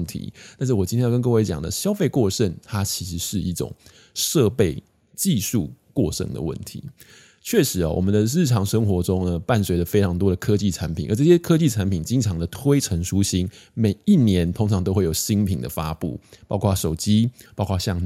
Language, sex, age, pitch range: Chinese, male, 20-39, 90-120 Hz